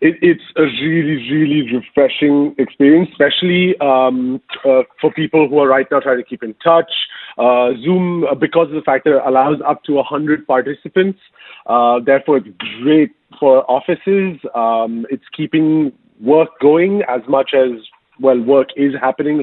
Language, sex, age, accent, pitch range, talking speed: English, male, 30-49, Indian, 135-160 Hz, 160 wpm